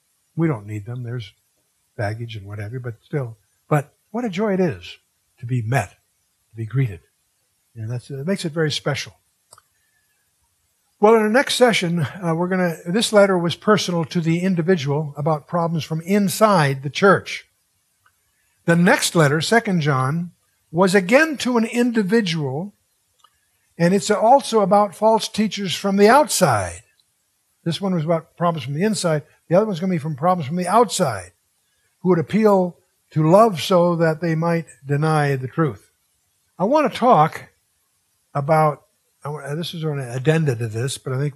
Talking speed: 165 wpm